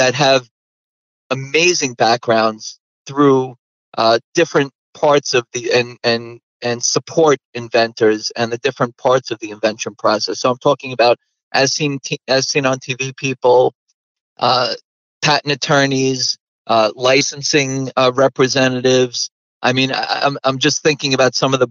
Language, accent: English, American